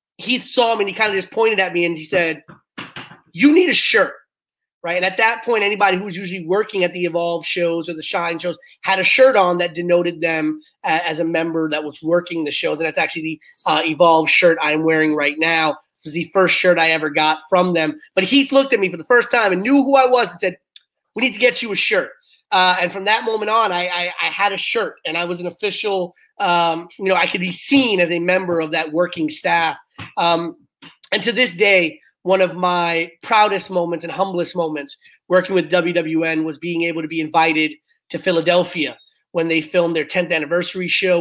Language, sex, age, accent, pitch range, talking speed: English, male, 30-49, American, 160-195 Hz, 230 wpm